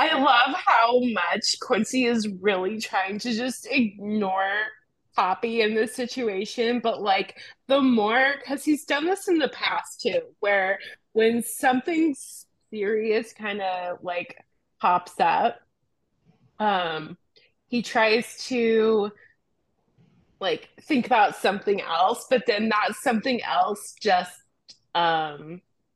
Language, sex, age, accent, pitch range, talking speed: English, female, 20-39, American, 195-260 Hz, 120 wpm